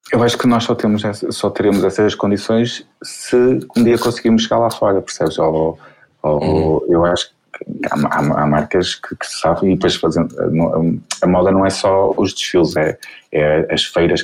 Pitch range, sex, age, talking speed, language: 90-110 Hz, male, 20-39, 180 wpm, Portuguese